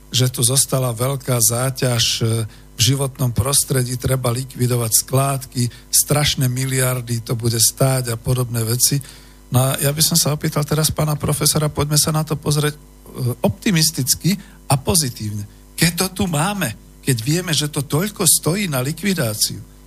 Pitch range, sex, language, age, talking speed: 120-150 Hz, male, Slovak, 50-69, 150 wpm